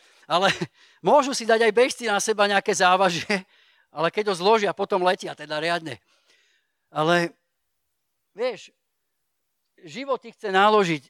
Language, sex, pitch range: Slovak, male, 160-195 Hz